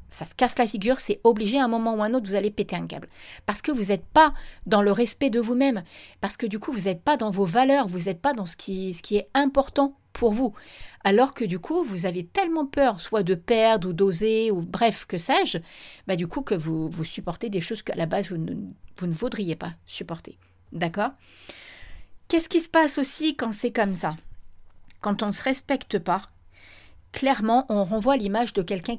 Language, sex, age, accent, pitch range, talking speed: French, female, 40-59, French, 180-240 Hz, 225 wpm